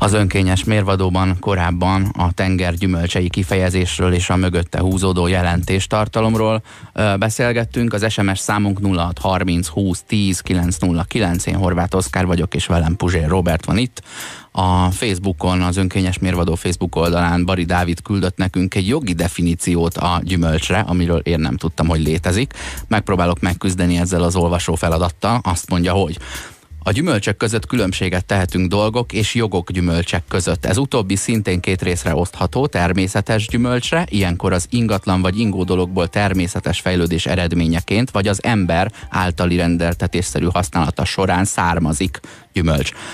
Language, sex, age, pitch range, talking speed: Hungarian, male, 30-49, 85-100 Hz, 130 wpm